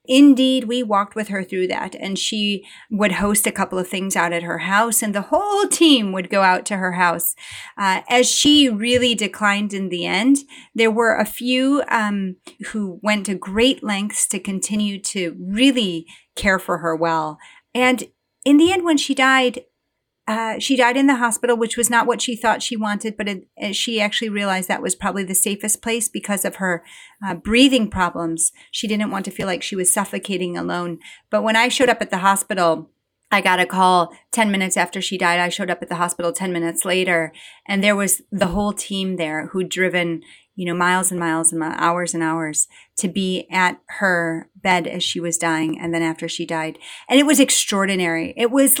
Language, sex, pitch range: English, female, 180-230 Hz